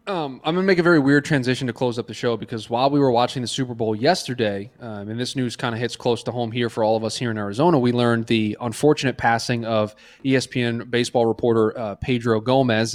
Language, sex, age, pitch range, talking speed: English, male, 20-39, 115-140 Hz, 240 wpm